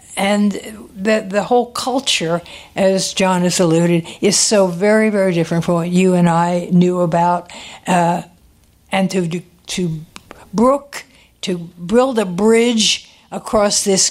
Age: 60-79